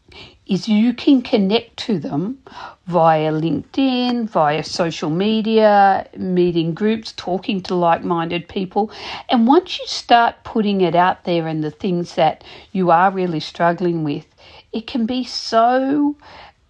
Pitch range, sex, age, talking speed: 165-215 Hz, female, 50-69, 140 wpm